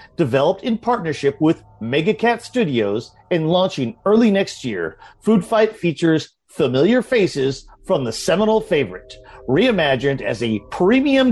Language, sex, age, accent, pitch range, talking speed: English, male, 40-59, American, 135-210 Hz, 125 wpm